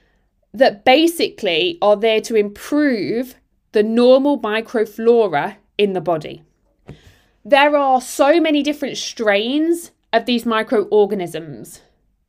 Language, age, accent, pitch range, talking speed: English, 20-39, British, 225-300 Hz, 105 wpm